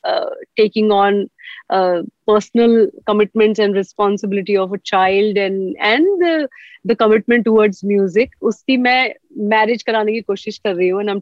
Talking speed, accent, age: 110 wpm, Indian, 30-49